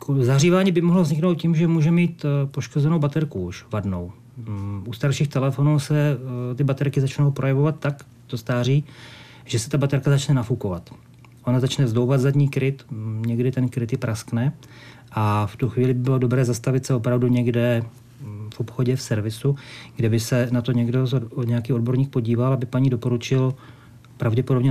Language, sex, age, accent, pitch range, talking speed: Czech, male, 40-59, native, 115-135 Hz, 160 wpm